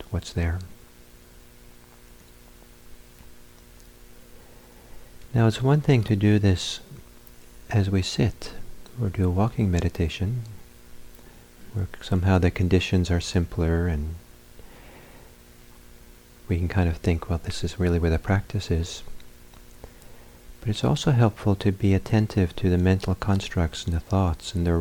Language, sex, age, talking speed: English, male, 50-69, 130 wpm